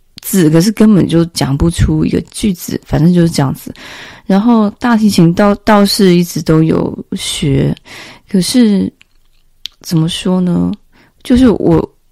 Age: 20-39